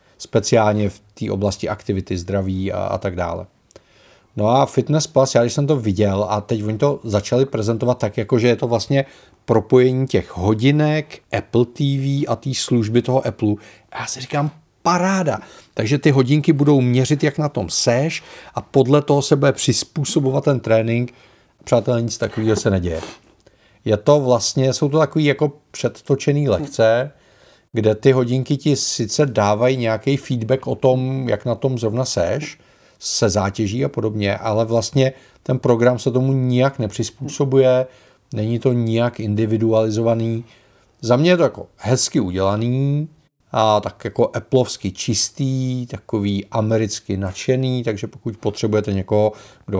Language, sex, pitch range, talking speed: Czech, male, 110-135 Hz, 155 wpm